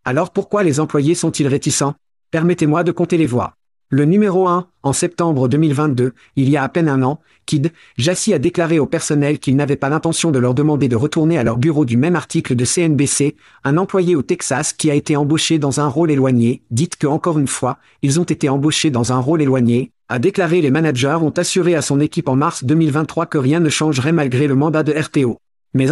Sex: male